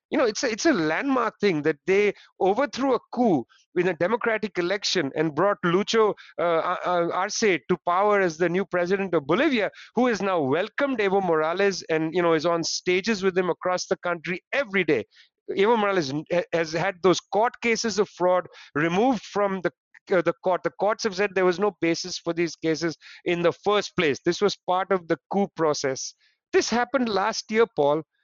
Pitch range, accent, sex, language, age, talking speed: 175-225 Hz, Indian, male, English, 50-69, 195 wpm